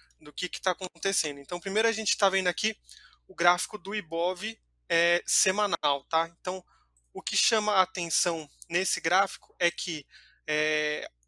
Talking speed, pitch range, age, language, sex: 160 wpm, 155-185 Hz, 20-39, Portuguese, male